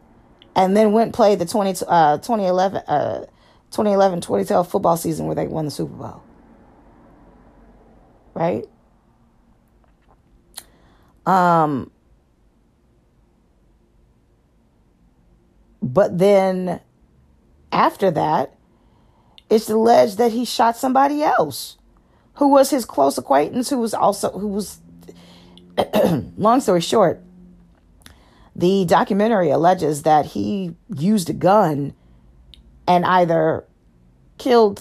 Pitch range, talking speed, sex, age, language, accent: 140-205 Hz, 95 wpm, female, 40-59, English, American